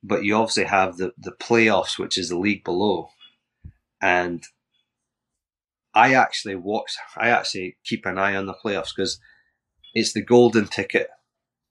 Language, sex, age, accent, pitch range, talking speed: English, male, 30-49, British, 95-110 Hz, 150 wpm